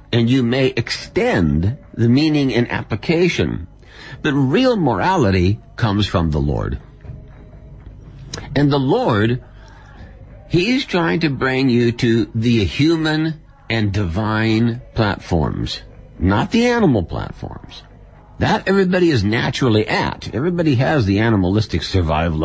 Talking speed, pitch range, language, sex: 115 wpm, 95-135 Hz, English, male